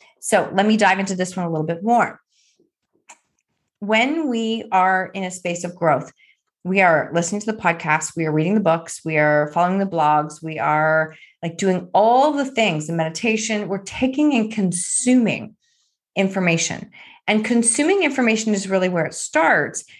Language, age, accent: English, 30-49, American